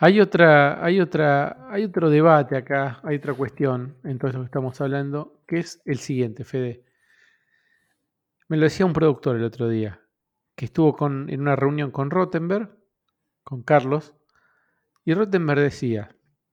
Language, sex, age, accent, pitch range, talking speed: Spanish, male, 50-69, Argentinian, 130-180 Hz, 155 wpm